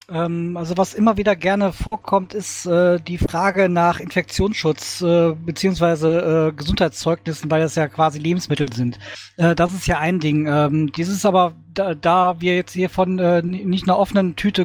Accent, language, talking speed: German, German, 145 wpm